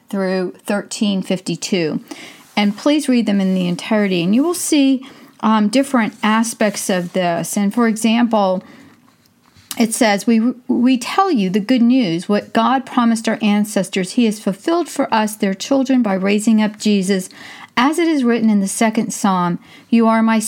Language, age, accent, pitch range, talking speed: English, 40-59, American, 205-250 Hz, 165 wpm